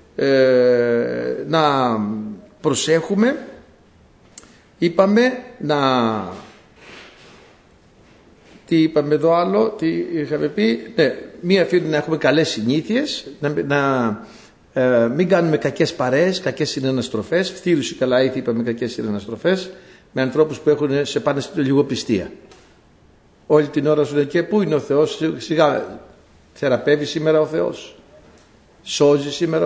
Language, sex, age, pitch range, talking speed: Greek, male, 60-79, 135-185 Hz, 115 wpm